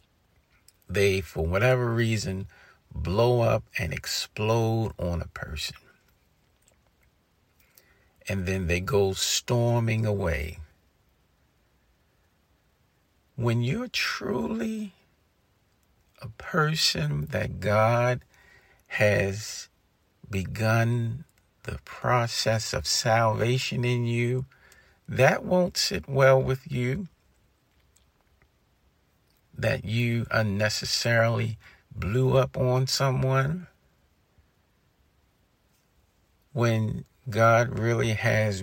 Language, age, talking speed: English, 50-69, 75 wpm